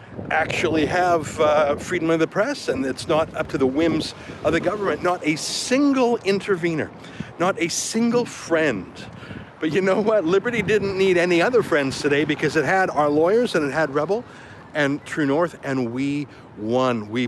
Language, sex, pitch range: English, male, 135-175 Hz